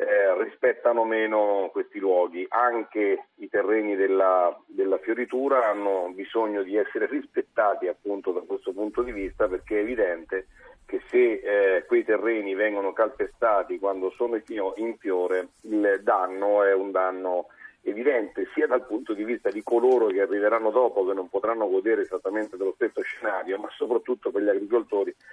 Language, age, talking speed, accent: Italian, 40-59, 155 wpm, native